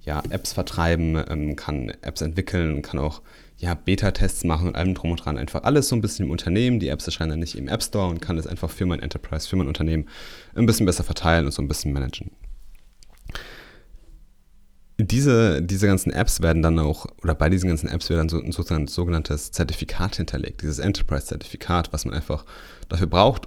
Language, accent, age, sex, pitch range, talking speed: German, German, 30-49, male, 80-95 Hz, 195 wpm